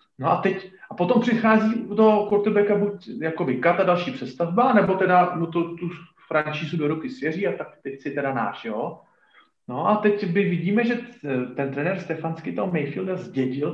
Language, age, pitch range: Slovak, 40-59, 145-205 Hz